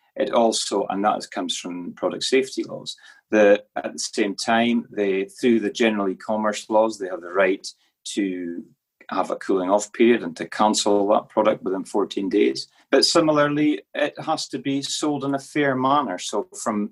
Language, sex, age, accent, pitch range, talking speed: English, male, 30-49, British, 100-140 Hz, 175 wpm